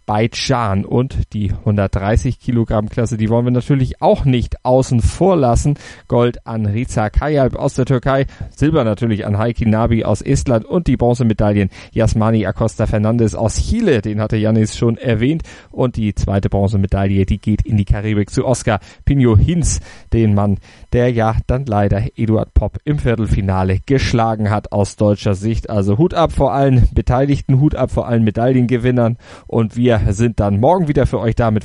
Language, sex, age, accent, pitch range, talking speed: German, male, 30-49, German, 105-130 Hz, 170 wpm